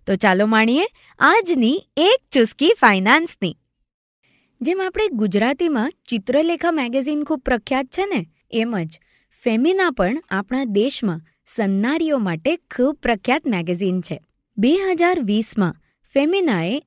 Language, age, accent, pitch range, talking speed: Gujarati, 20-39, native, 190-290 Hz, 70 wpm